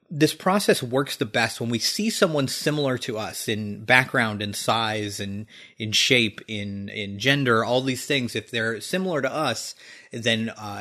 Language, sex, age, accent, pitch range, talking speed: English, male, 30-49, American, 110-140 Hz, 185 wpm